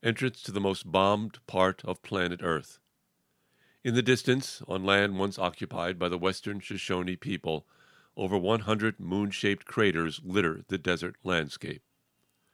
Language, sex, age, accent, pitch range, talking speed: English, male, 50-69, American, 85-105 Hz, 140 wpm